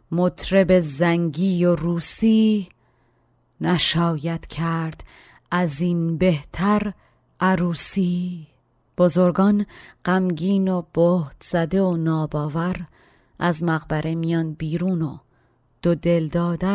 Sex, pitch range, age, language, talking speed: female, 160-185 Hz, 30-49, Persian, 85 wpm